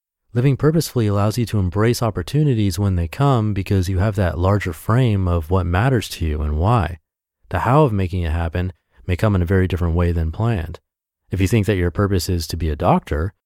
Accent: American